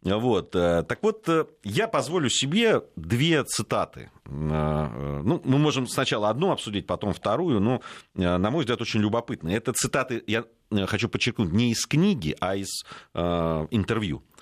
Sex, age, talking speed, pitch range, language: male, 40-59, 135 wpm, 105-150 Hz, Russian